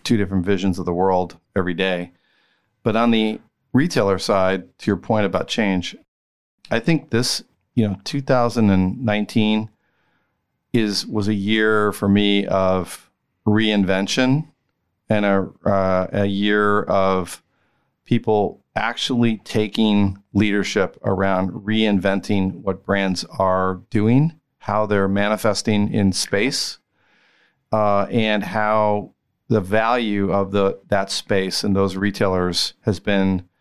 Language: English